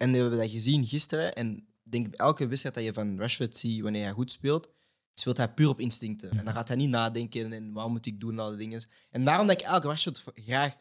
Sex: male